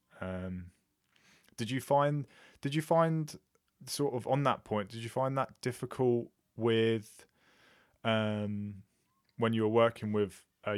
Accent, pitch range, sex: British, 100-115 Hz, male